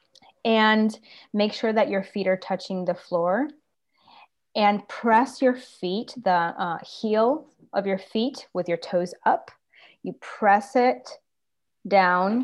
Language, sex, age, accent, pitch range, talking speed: English, female, 30-49, American, 180-215 Hz, 135 wpm